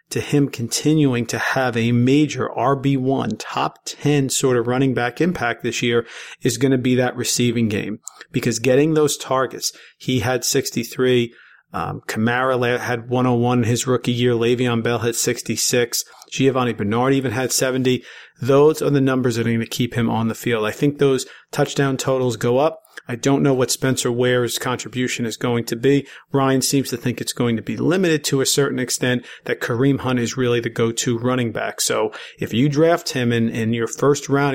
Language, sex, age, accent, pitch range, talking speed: English, male, 40-59, American, 120-135 Hz, 190 wpm